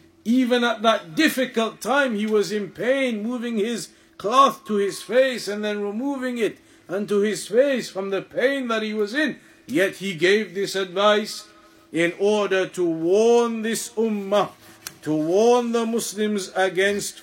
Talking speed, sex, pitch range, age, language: 155 wpm, male, 190-245 Hz, 50-69, English